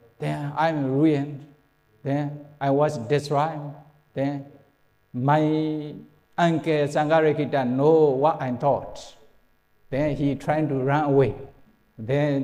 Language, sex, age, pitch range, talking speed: English, male, 60-79, 125-160 Hz, 105 wpm